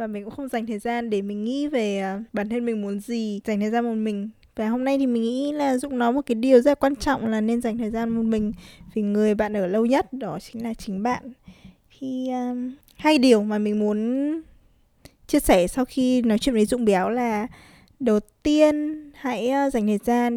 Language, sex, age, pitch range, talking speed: Vietnamese, female, 10-29, 215-260 Hz, 225 wpm